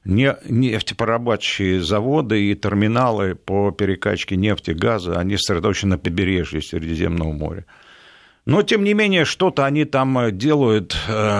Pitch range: 90-115 Hz